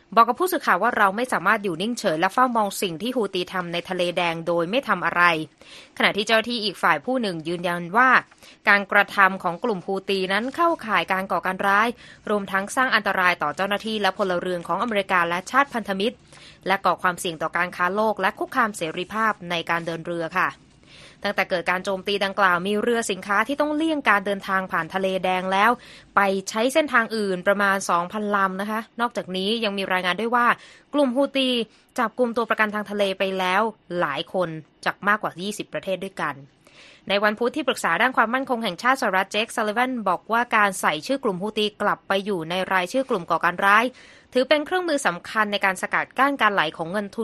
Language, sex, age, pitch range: Thai, female, 20-39, 180-230 Hz